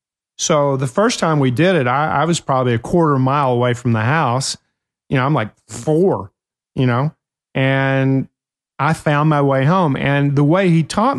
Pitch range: 125-155 Hz